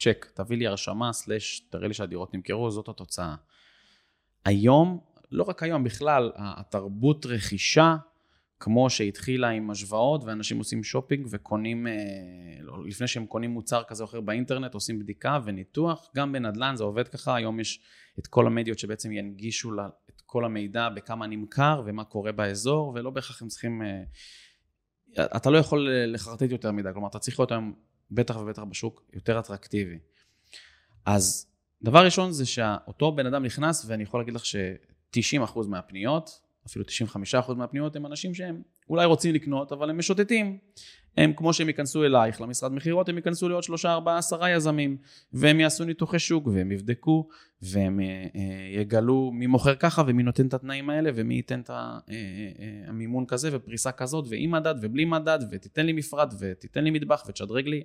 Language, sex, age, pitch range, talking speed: Hebrew, male, 20-39, 105-145 Hz, 160 wpm